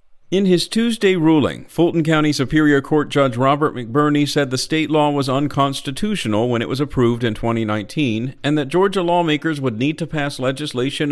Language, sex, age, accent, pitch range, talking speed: English, male, 50-69, American, 120-165 Hz, 175 wpm